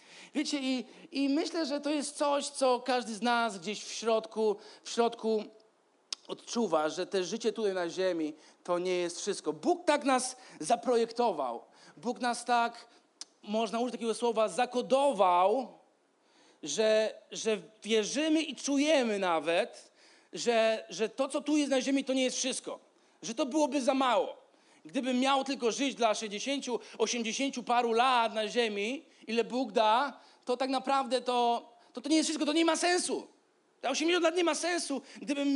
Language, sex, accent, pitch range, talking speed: Polish, male, native, 220-275 Hz, 160 wpm